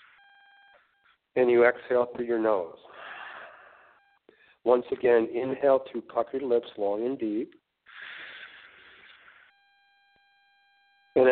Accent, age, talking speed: American, 50-69, 90 wpm